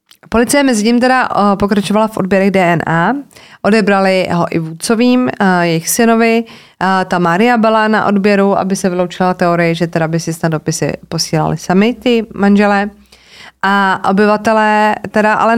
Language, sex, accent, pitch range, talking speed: Czech, female, native, 170-215 Hz, 145 wpm